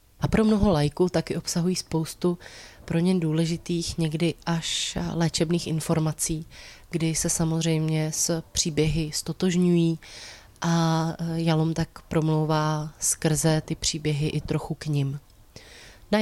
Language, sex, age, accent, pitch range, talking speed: Czech, female, 20-39, native, 155-170 Hz, 120 wpm